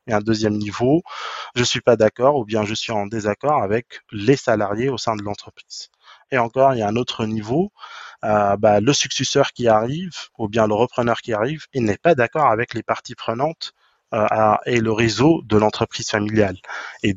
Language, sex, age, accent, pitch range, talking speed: French, male, 20-39, French, 105-125 Hz, 210 wpm